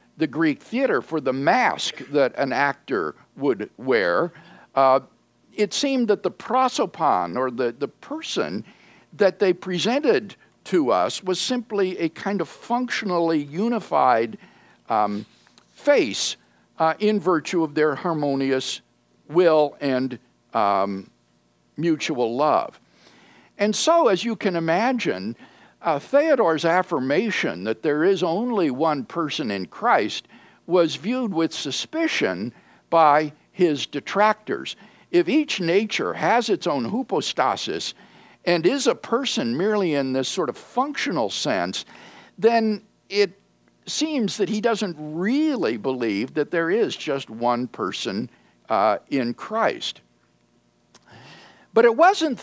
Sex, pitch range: male, 145-230 Hz